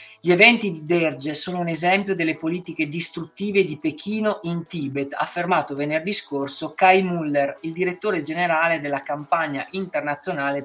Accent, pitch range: native, 140-180 Hz